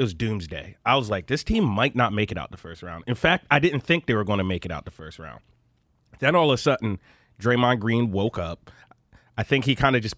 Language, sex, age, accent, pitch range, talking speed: English, male, 30-49, American, 115-140 Hz, 265 wpm